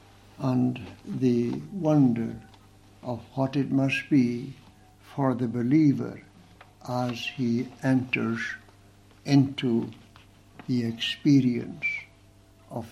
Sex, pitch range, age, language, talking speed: male, 100-125 Hz, 60-79, English, 85 wpm